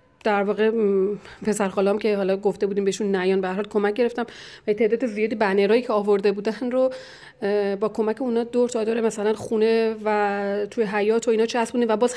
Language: Persian